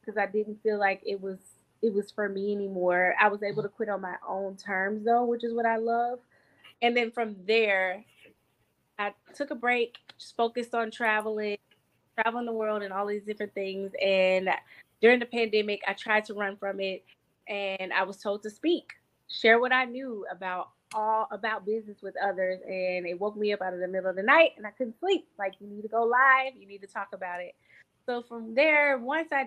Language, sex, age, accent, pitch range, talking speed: English, female, 20-39, American, 195-235 Hz, 215 wpm